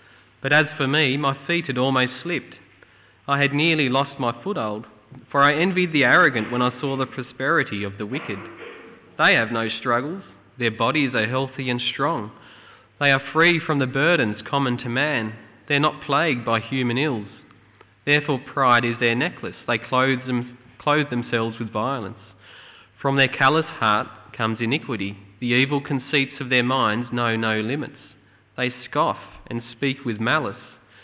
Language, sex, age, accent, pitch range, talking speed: English, male, 20-39, Australian, 115-140 Hz, 165 wpm